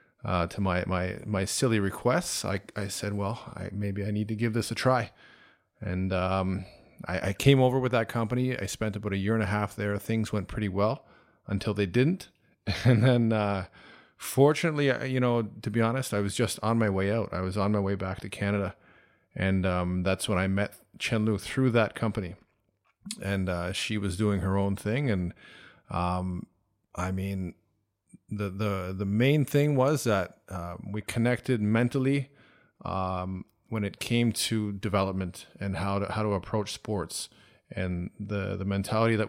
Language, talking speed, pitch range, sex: English, 180 wpm, 95-115 Hz, male